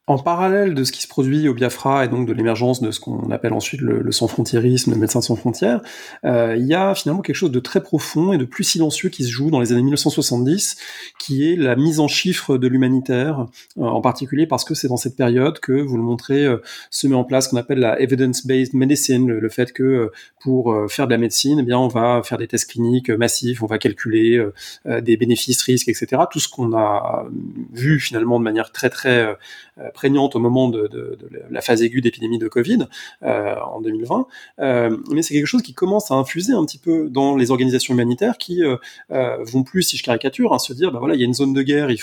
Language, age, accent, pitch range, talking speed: French, 30-49, French, 120-145 Hz, 240 wpm